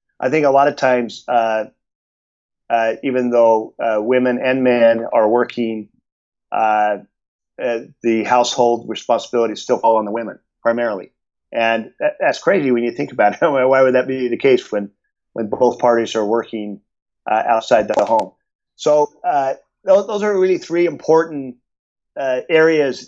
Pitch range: 115-140 Hz